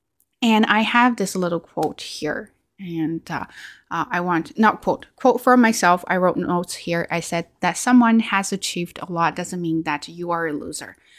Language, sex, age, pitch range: Chinese, female, 20-39, 165-215 Hz